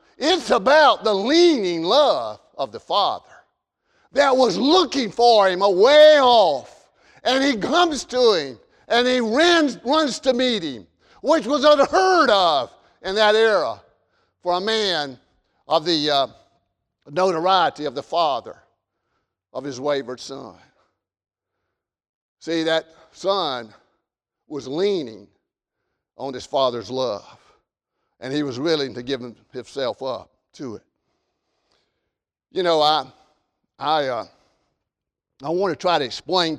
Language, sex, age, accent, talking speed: English, male, 50-69, American, 125 wpm